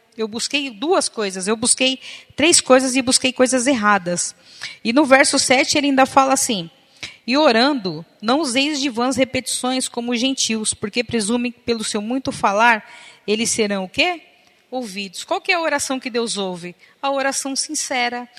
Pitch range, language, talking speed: 220-270 Hz, Portuguese, 170 wpm